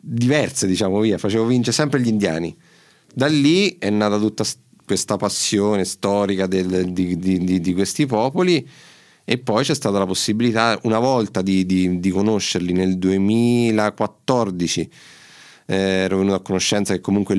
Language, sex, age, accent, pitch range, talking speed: Italian, male, 30-49, native, 95-120 Hz, 140 wpm